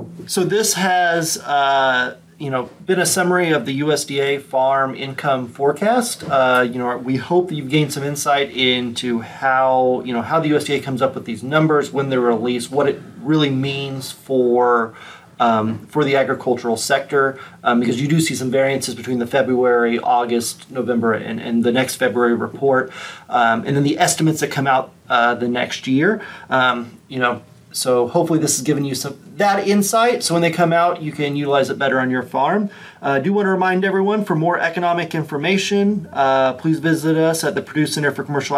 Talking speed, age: 195 wpm, 30-49